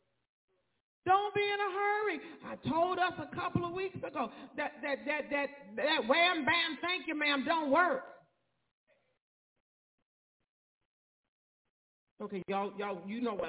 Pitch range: 275-380 Hz